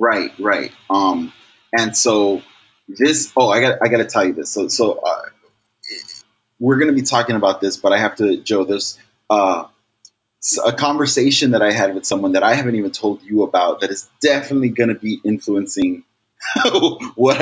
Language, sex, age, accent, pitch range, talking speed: English, male, 20-39, American, 95-150 Hz, 175 wpm